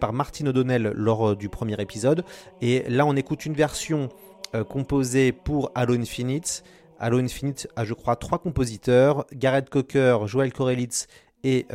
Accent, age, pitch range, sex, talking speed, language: French, 30-49, 110-135 Hz, male, 155 wpm, French